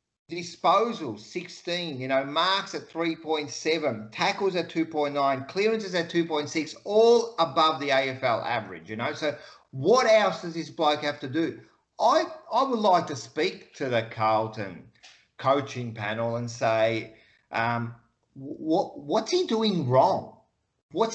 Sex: male